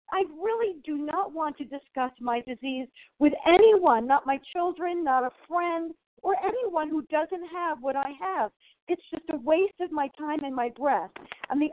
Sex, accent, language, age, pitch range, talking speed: female, American, English, 50-69, 260-325 Hz, 190 wpm